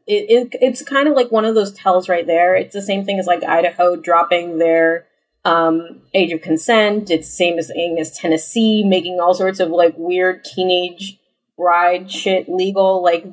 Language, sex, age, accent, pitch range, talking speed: English, female, 20-39, American, 180-235 Hz, 175 wpm